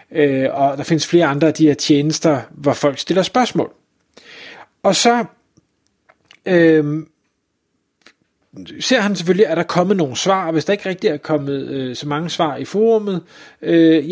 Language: Danish